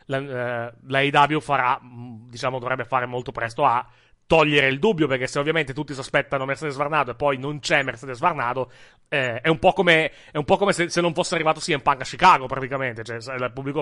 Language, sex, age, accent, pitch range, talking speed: Italian, male, 30-49, native, 130-155 Hz, 215 wpm